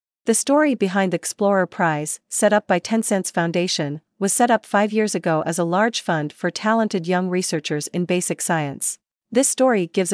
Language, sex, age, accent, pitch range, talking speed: English, female, 40-59, American, 165-210 Hz, 185 wpm